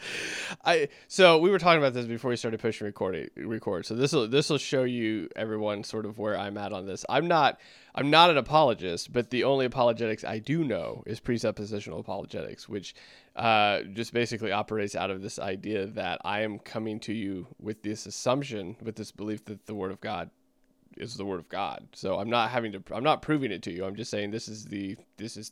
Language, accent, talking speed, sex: English, American, 220 wpm, male